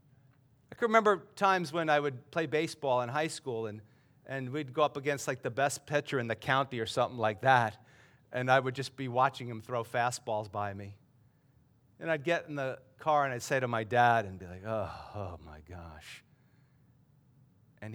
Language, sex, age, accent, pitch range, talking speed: English, male, 50-69, American, 125-175 Hz, 200 wpm